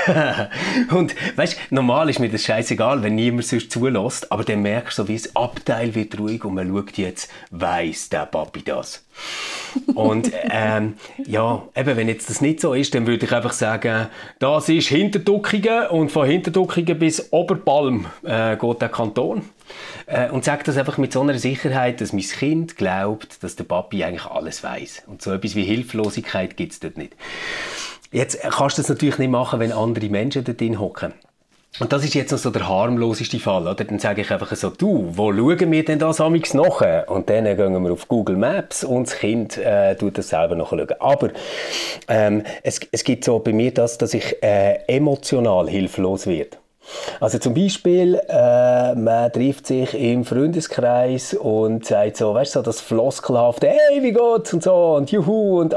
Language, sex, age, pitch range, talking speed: German, male, 30-49, 110-150 Hz, 190 wpm